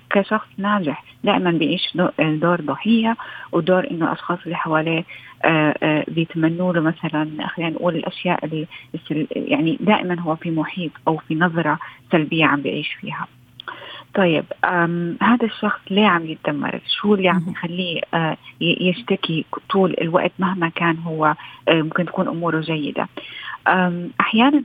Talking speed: 130 wpm